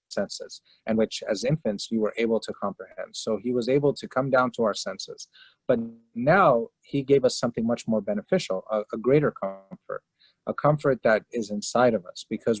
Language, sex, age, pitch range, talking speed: English, male, 30-49, 105-130 Hz, 195 wpm